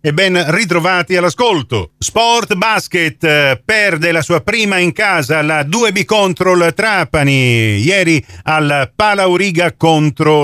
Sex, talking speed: male, 120 wpm